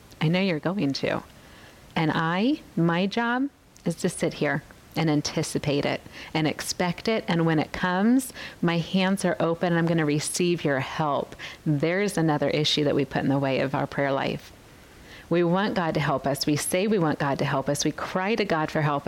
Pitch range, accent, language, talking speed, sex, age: 155-200 Hz, American, English, 210 wpm, female, 40-59